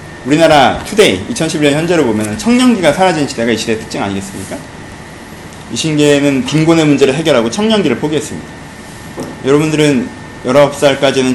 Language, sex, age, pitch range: Korean, male, 30-49, 150-225 Hz